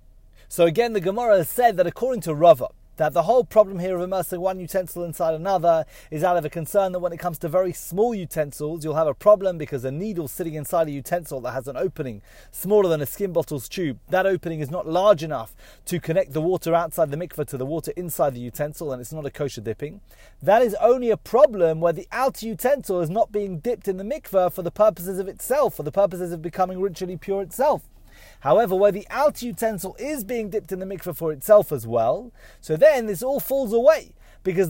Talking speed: 225 wpm